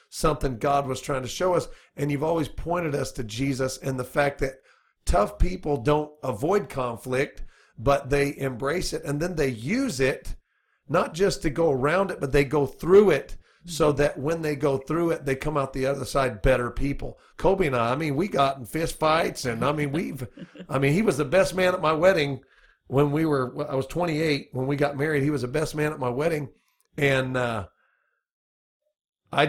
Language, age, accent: English, 40-59, American